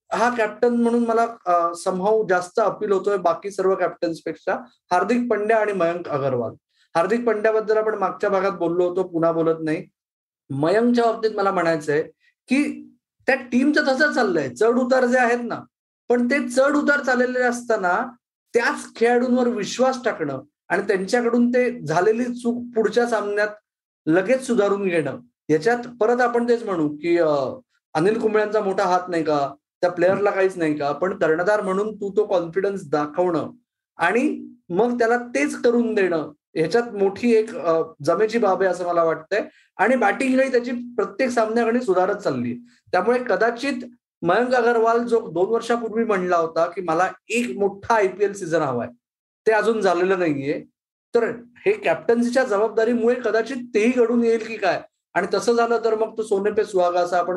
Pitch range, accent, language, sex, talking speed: 180-240 Hz, native, Marathi, male, 120 wpm